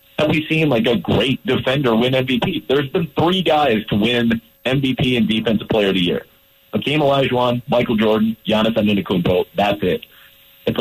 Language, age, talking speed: English, 40-59, 170 wpm